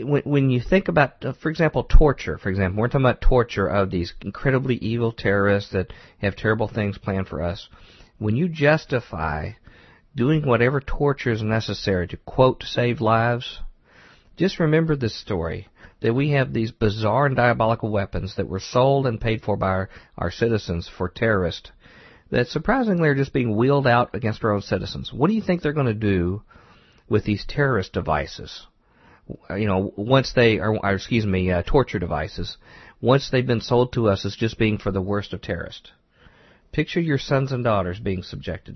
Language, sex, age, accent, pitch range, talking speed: English, male, 50-69, American, 95-125 Hz, 180 wpm